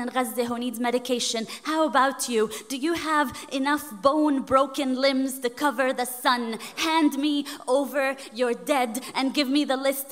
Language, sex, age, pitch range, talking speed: English, female, 20-39, 240-275 Hz, 160 wpm